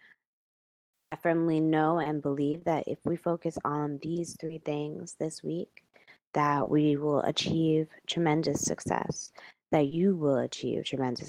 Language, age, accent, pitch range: English, 20-39, American, 130-160 Hz